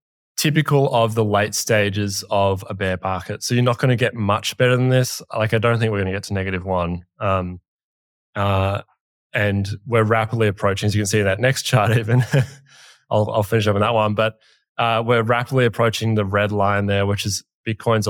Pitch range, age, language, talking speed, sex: 100-115 Hz, 20-39, English, 210 wpm, male